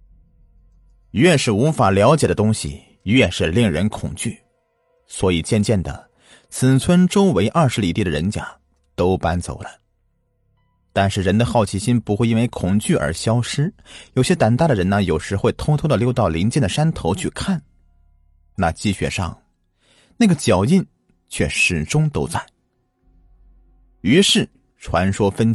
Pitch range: 90-125 Hz